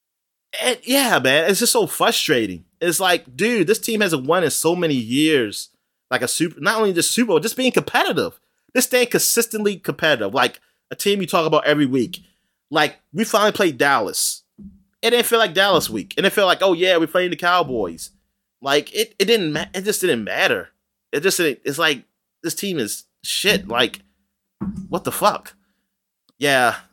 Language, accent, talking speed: English, American, 185 wpm